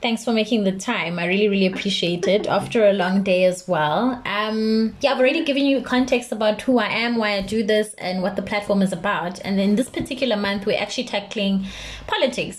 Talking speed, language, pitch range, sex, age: 220 wpm, English, 185-225 Hz, female, 20-39